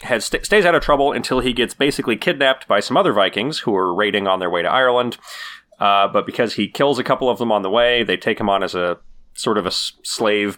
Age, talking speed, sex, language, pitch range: 30-49, 245 wpm, male, English, 100-125 Hz